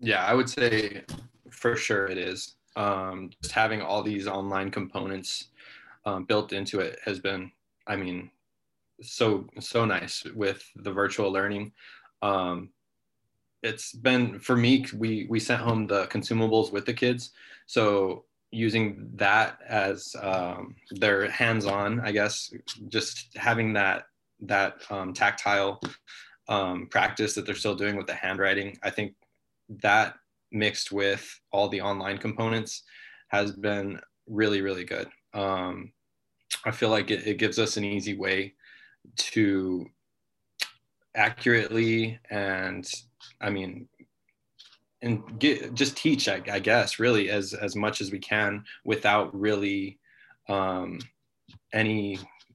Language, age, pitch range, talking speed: English, 20-39, 95-115 Hz, 130 wpm